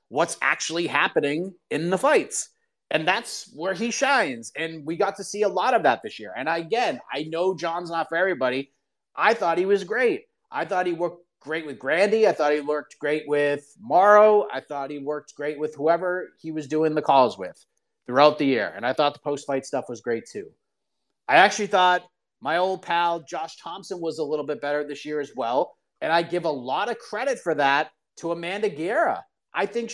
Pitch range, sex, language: 150-200 Hz, male, English